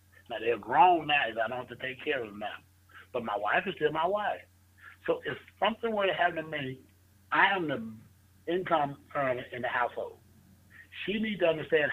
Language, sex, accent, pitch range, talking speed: English, male, American, 130-200 Hz, 200 wpm